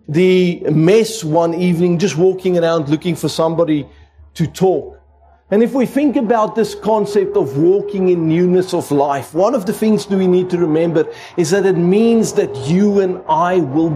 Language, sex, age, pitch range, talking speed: English, male, 50-69, 165-210 Hz, 185 wpm